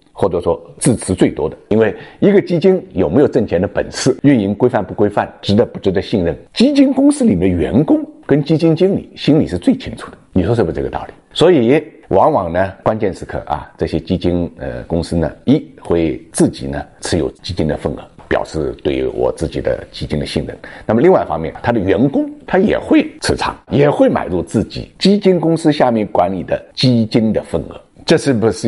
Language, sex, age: Chinese, male, 50-69